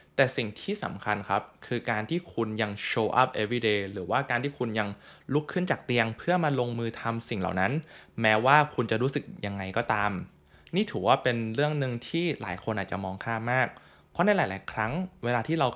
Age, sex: 20-39, male